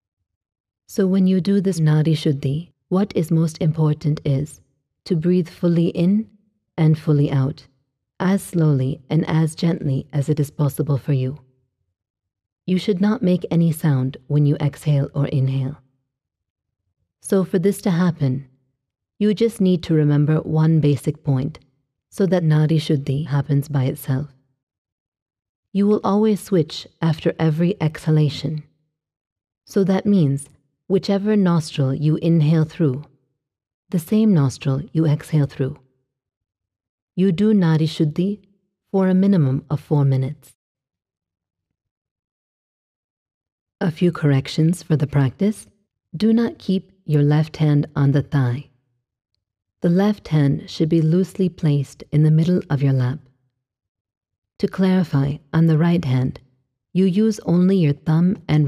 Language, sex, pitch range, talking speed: English, female, 130-175 Hz, 135 wpm